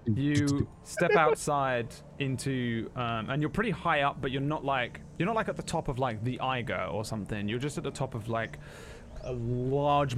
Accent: British